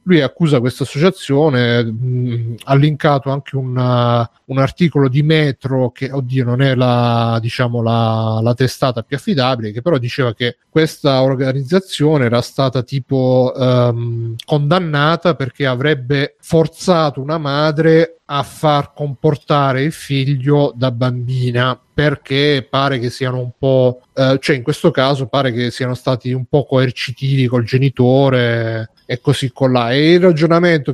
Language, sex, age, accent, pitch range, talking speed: Italian, male, 30-49, native, 125-150 Hz, 140 wpm